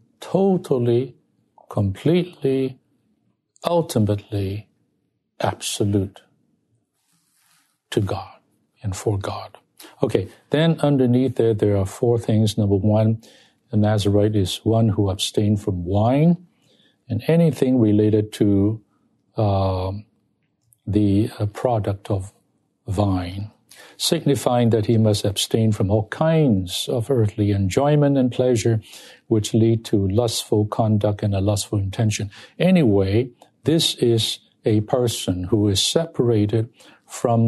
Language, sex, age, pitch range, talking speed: English, male, 60-79, 105-125 Hz, 110 wpm